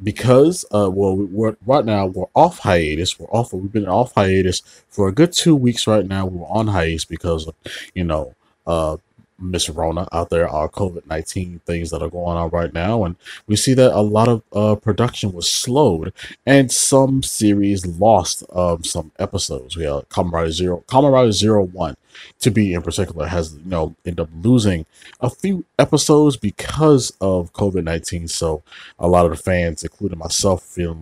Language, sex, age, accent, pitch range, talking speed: English, male, 30-49, American, 85-110 Hz, 180 wpm